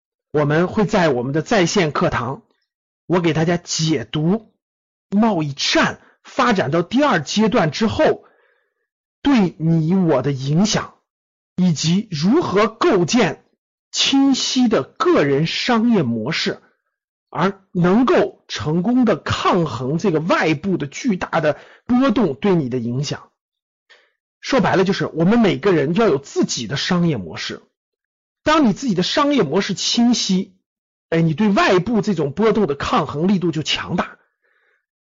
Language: Chinese